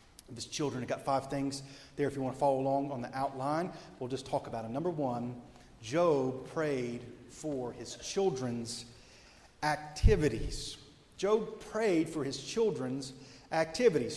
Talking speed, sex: 150 wpm, male